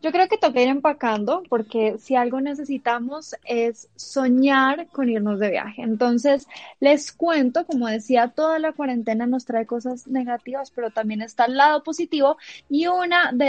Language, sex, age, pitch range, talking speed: Spanish, female, 10-29, 235-300 Hz, 165 wpm